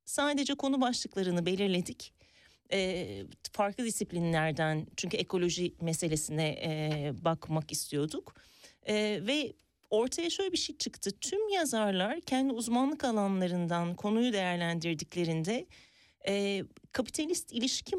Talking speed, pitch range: 100 wpm, 175-240 Hz